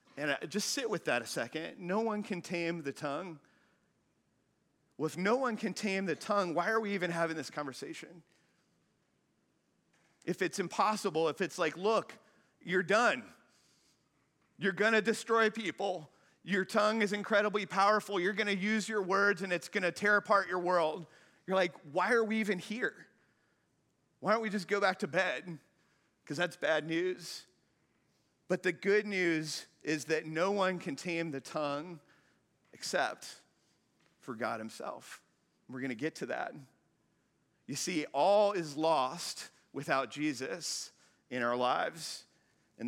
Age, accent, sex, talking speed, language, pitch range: 40-59, American, male, 155 wpm, English, 145-200 Hz